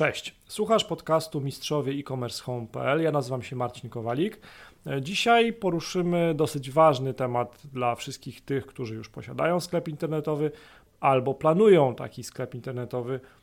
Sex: male